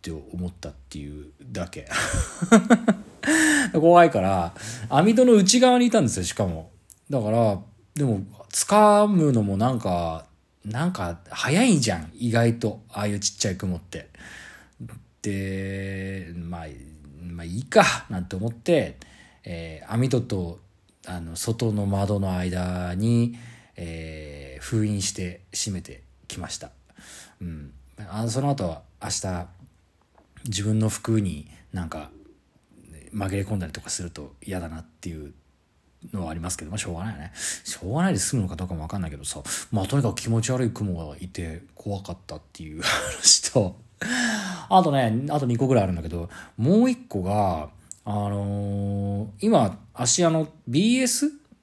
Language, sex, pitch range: Japanese, male, 85-125 Hz